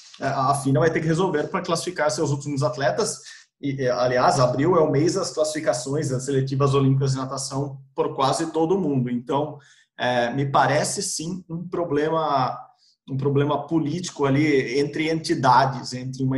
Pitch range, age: 130-165 Hz, 20-39